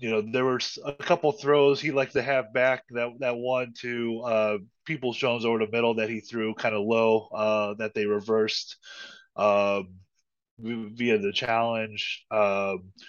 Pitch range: 105-125 Hz